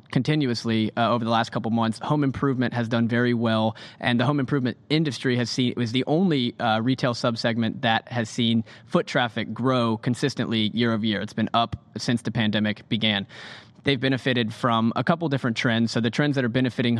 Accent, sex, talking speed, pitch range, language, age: American, male, 200 wpm, 115-130 Hz, English, 20-39